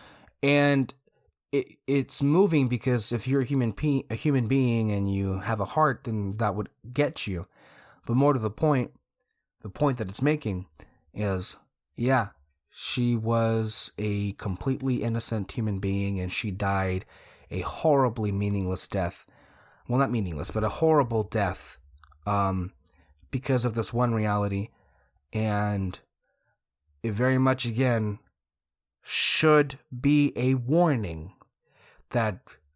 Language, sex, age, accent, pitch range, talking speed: English, male, 30-49, American, 100-130 Hz, 130 wpm